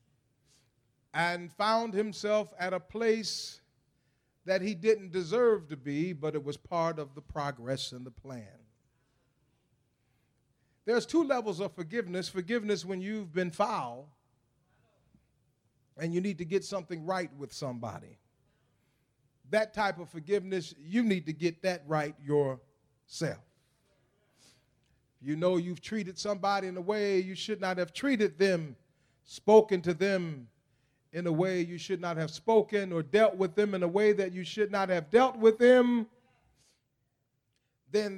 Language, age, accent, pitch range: English, 40-59, American, 140-200 Hz